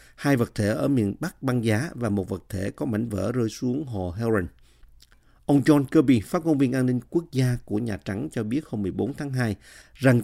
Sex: male